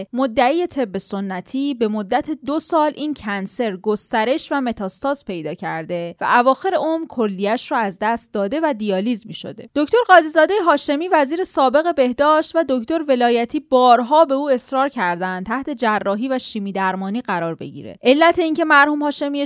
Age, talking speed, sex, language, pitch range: 20-39, 155 wpm, female, Persian, 205-285 Hz